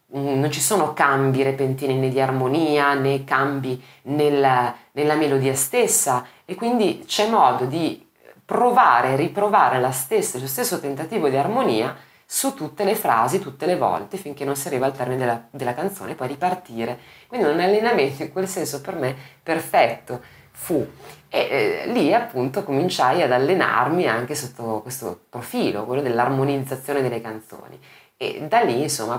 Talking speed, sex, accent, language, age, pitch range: 150 wpm, female, native, Italian, 30-49, 125-150 Hz